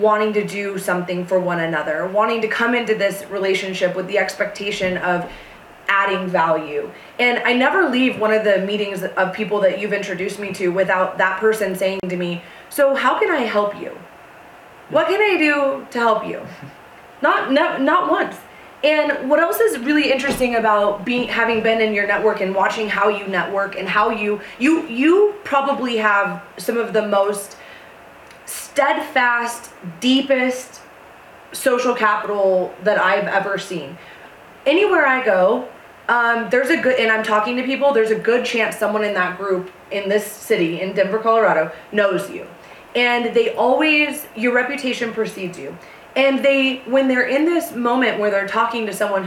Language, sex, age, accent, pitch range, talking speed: English, female, 20-39, American, 195-255 Hz, 170 wpm